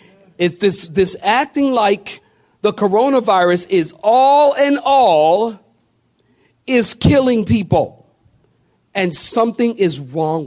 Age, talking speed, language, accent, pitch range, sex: 50-69, 105 wpm, English, American, 145-210 Hz, male